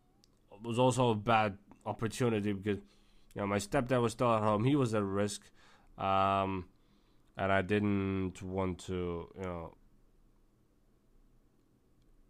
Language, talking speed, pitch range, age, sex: English, 120 wpm, 105-140 Hz, 20-39, male